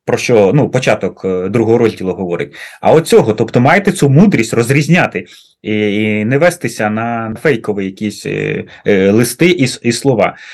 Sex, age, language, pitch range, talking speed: male, 30-49, Ukrainian, 110-160 Hz, 150 wpm